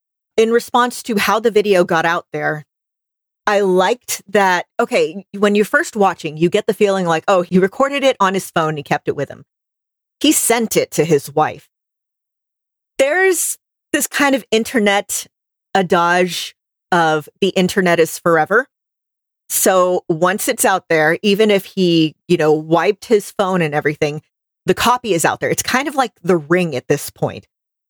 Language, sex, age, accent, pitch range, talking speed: English, female, 40-59, American, 160-220 Hz, 170 wpm